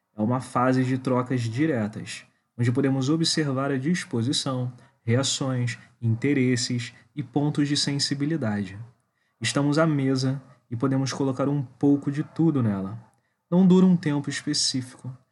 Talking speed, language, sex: 130 wpm, Portuguese, male